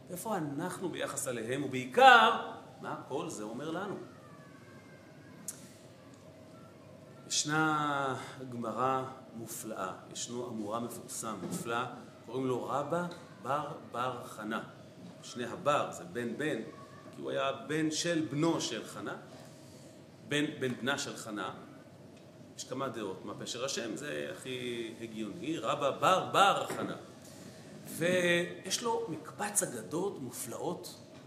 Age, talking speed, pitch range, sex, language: 40-59, 115 wpm, 125-170 Hz, male, Hebrew